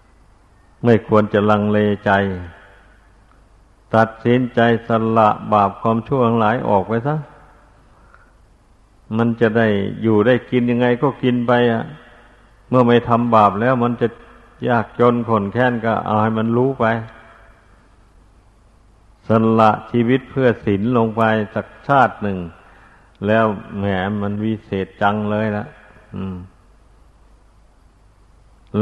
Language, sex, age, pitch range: Thai, male, 60-79, 100-120 Hz